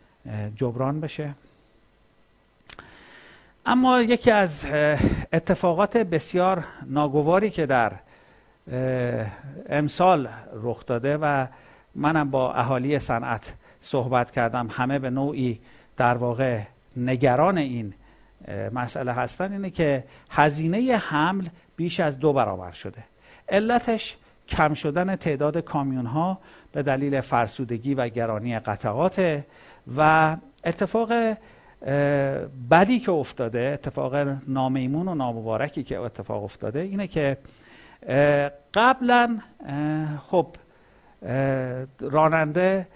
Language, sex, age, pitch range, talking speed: Persian, male, 50-69, 130-170 Hz, 90 wpm